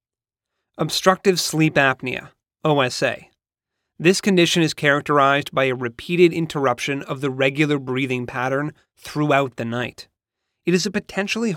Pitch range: 130-170 Hz